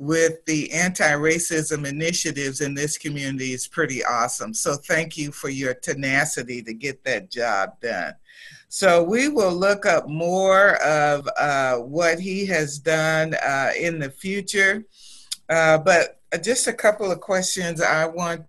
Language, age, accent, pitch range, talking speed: English, 50-69, American, 145-180 Hz, 150 wpm